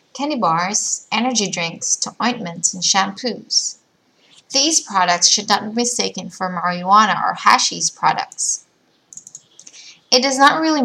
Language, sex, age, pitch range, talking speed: English, female, 20-39, 190-245 Hz, 125 wpm